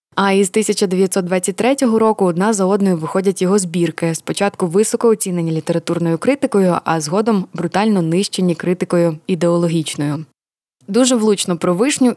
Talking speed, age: 125 wpm, 20-39